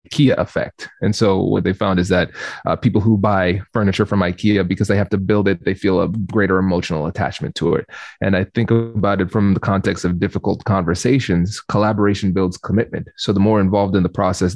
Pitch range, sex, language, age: 100-125 Hz, male, English, 20-39